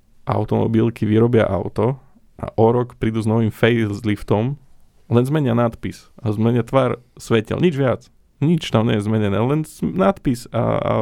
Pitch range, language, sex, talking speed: 105-120 Hz, Slovak, male, 160 wpm